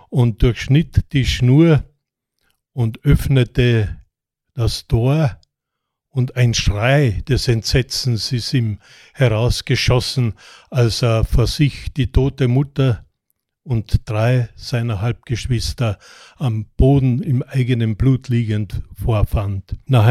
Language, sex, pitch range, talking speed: German, male, 115-140 Hz, 105 wpm